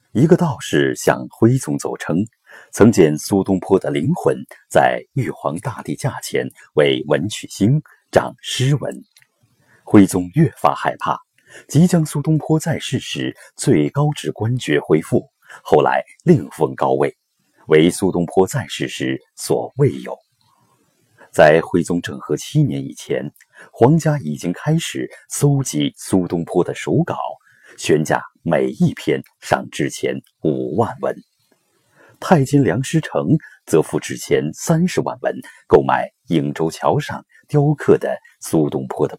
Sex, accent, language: male, native, Chinese